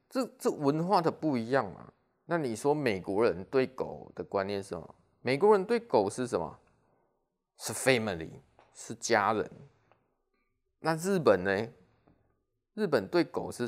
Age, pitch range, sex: 20-39, 105-160 Hz, male